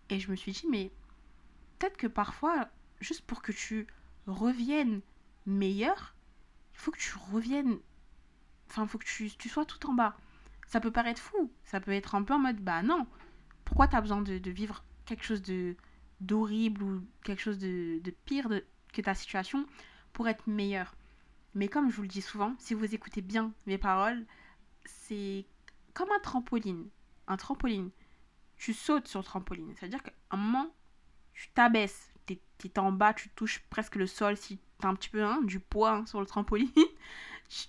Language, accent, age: French, French, 20-39